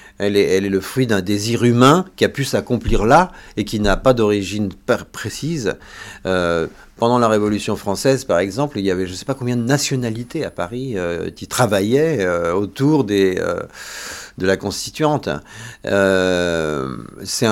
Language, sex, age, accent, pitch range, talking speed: French, male, 50-69, French, 95-130 Hz, 180 wpm